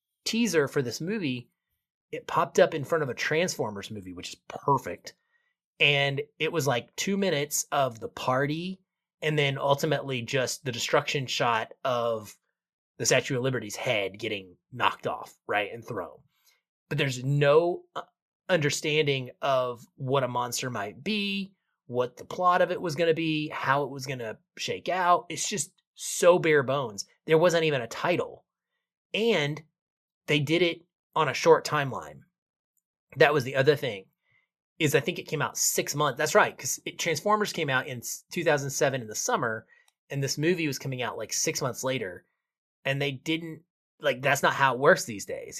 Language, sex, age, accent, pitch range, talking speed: English, male, 30-49, American, 125-165 Hz, 175 wpm